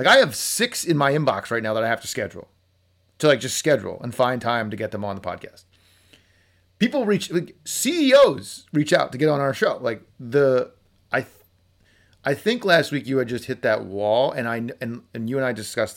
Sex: male